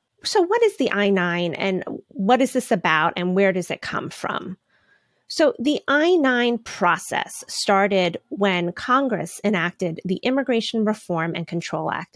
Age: 30-49